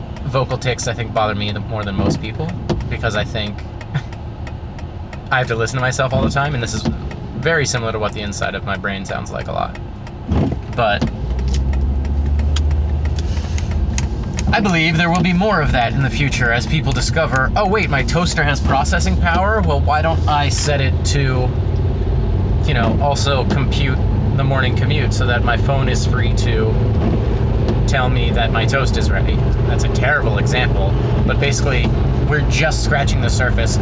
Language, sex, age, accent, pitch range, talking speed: English, male, 30-49, American, 75-120 Hz, 175 wpm